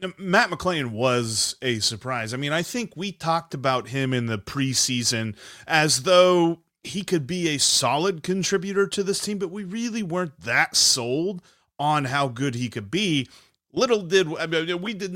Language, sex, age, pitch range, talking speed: English, male, 30-49, 120-180 Hz, 170 wpm